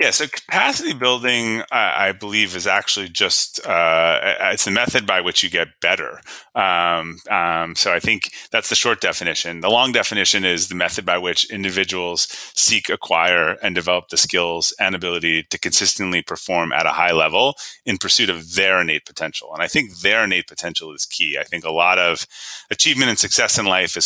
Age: 30-49